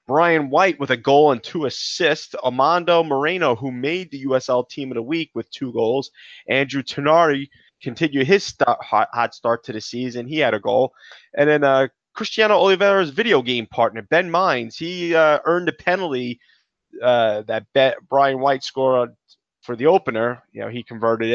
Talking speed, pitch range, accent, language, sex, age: 180 wpm, 125-160 Hz, American, English, male, 20-39